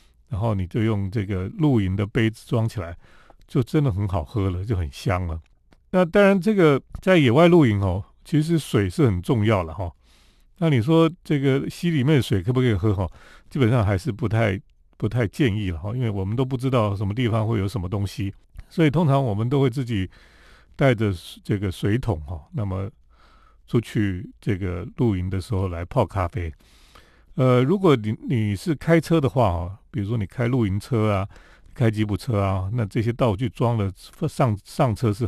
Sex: male